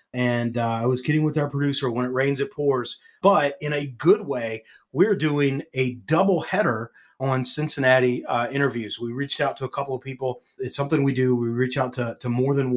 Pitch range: 110-130 Hz